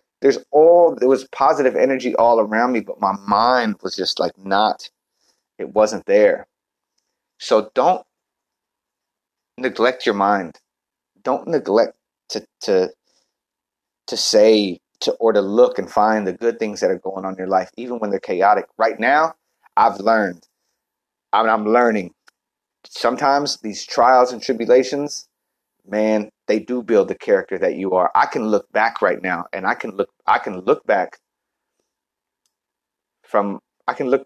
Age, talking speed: 30-49, 150 wpm